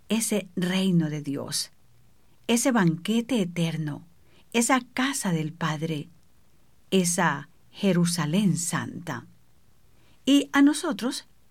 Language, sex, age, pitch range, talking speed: English, female, 50-69, 165-235 Hz, 90 wpm